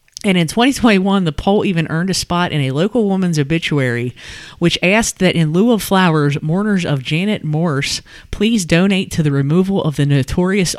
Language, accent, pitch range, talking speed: English, American, 150-190 Hz, 185 wpm